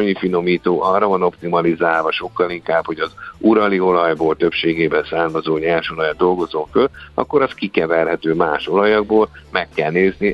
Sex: male